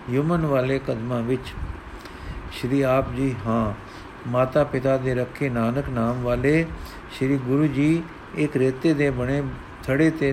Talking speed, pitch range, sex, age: 140 wpm, 125-155 Hz, male, 50-69